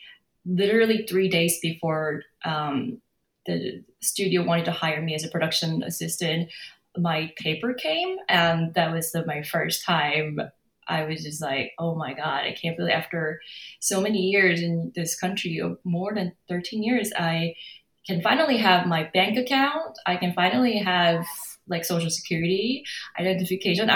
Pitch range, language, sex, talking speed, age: 165-215 Hz, English, female, 150 wpm, 20-39